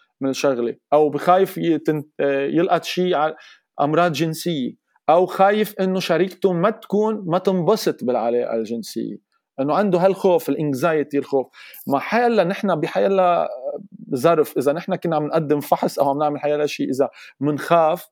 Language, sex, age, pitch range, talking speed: Arabic, male, 40-59, 140-175 Hz, 140 wpm